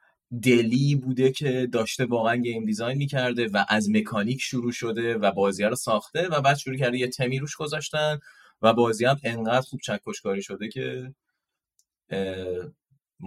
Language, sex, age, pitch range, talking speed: Persian, male, 30-49, 115-155 Hz, 145 wpm